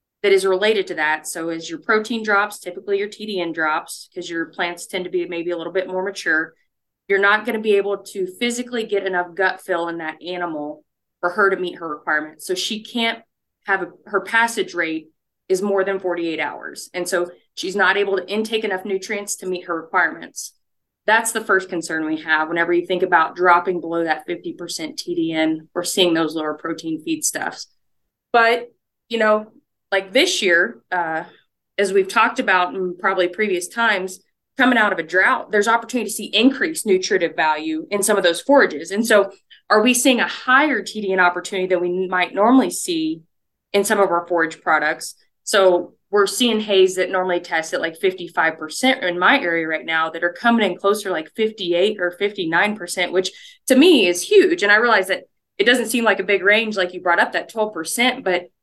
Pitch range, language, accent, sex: 175-215 Hz, English, American, female